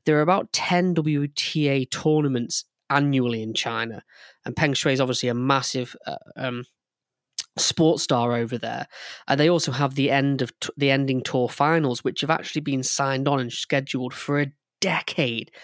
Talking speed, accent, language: 175 wpm, British, English